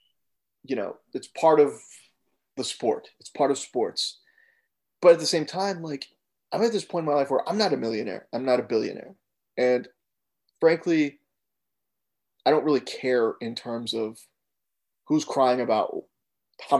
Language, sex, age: English, male, 30-49